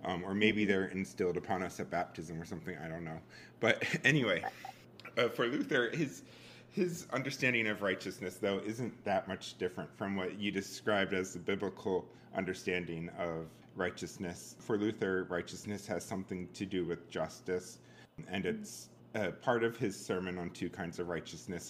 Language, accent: English, American